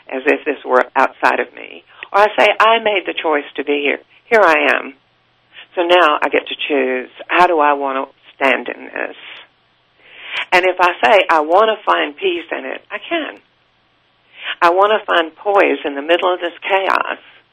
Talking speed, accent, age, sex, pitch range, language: 200 wpm, American, 60-79, female, 145-185 Hz, English